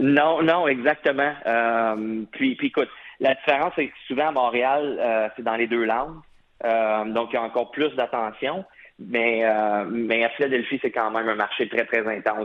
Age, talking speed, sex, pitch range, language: 30-49, 195 wpm, male, 110-140 Hz, French